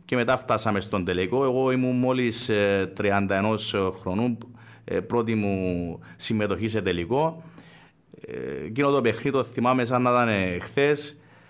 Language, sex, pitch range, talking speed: Greek, male, 110-130 Hz, 125 wpm